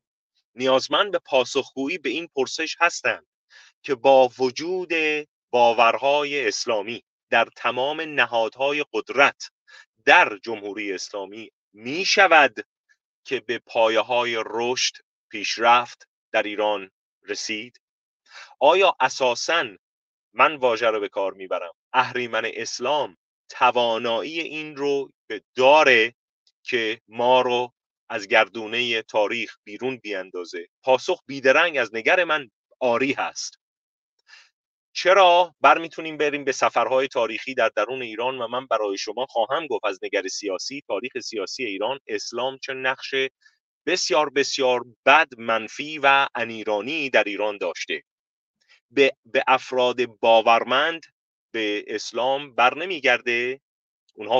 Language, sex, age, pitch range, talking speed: Persian, male, 30-49, 115-155 Hz, 110 wpm